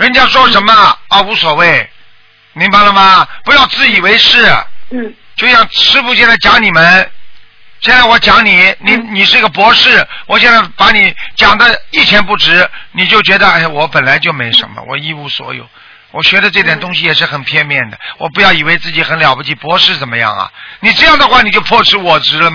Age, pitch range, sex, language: 50-69, 175-240 Hz, male, Chinese